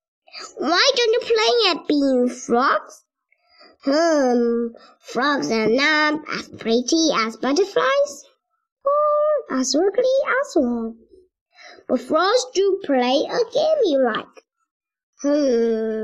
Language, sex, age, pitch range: Chinese, male, 20-39, 245-380 Hz